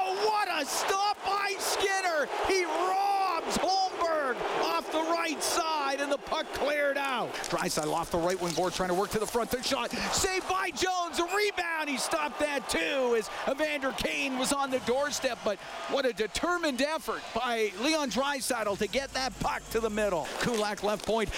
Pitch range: 240-335 Hz